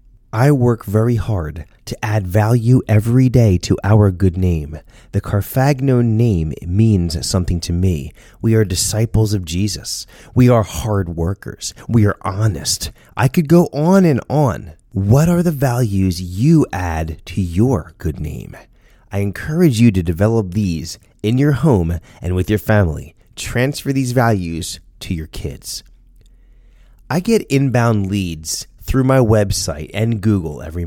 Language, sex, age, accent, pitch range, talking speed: English, male, 30-49, American, 95-120 Hz, 150 wpm